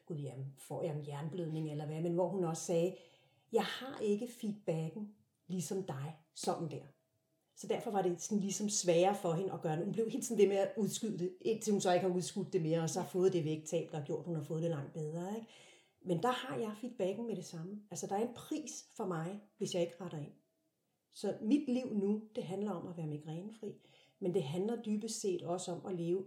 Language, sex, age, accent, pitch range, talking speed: Danish, female, 40-59, native, 170-215 Hz, 240 wpm